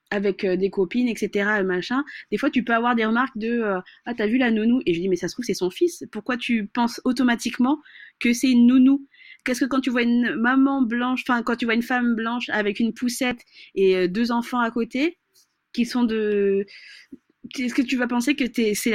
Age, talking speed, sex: 20-39, 225 wpm, female